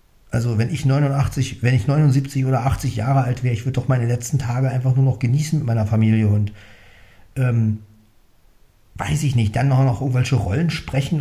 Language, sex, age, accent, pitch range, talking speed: German, male, 40-59, German, 100-125 Hz, 195 wpm